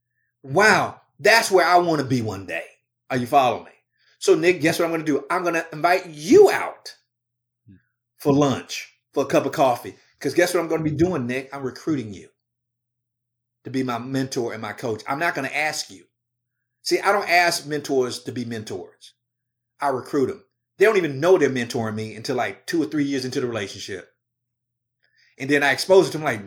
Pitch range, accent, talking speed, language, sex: 120-175 Hz, American, 215 wpm, English, male